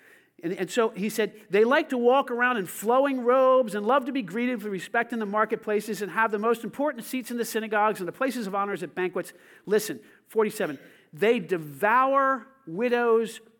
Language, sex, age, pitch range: English, male, 50-69, 220-275 Hz